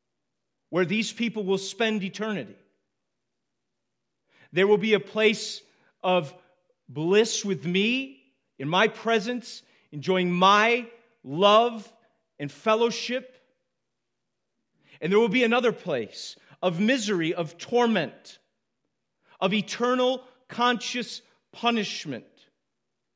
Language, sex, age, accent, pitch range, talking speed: English, male, 40-59, American, 140-220 Hz, 95 wpm